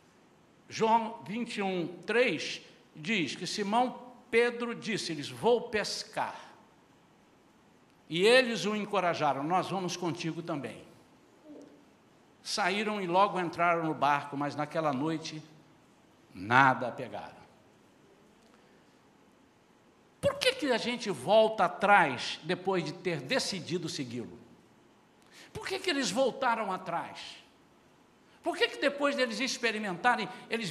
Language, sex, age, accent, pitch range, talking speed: Portuguese, male, 60-79, Brazilian, 180-270 Hz, 105 wpm